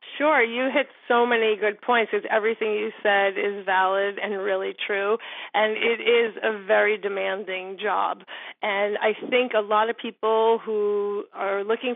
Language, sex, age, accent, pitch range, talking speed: English, female, 30-49, American, 200-235 Hz, 165 wpm